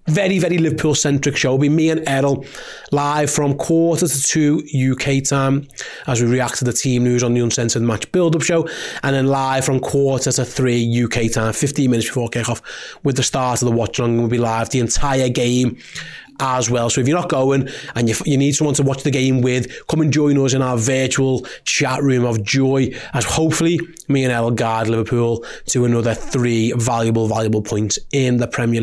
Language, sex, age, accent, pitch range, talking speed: English, male, 30-49, British, 125-145 Hz, 205 wpm